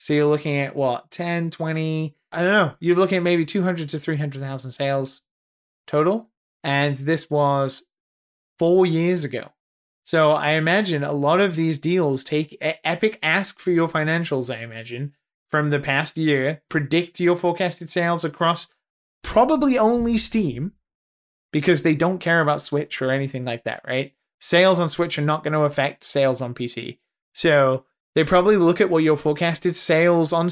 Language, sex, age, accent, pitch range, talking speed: English, male, 20-39, American, 140-170 Hz, 165 wpm